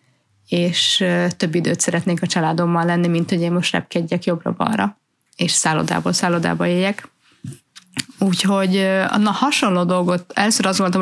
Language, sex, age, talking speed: Hungarian, female, 30-49, 125 wpm